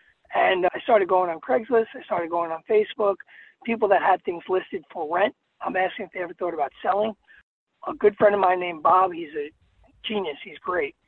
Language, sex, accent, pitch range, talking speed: English, male, American, 175-215 Hz, 205 wpm